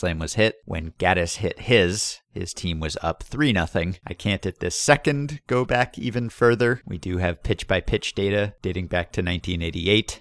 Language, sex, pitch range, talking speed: English, male, 90-110 Hz, 170 wpm